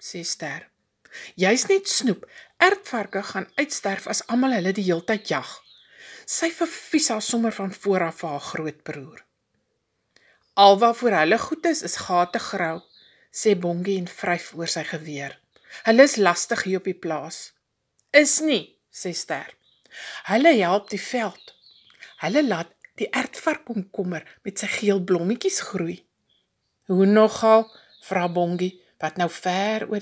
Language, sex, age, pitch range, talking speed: English, female, 50-69, 180-255 Hz, 140 wpm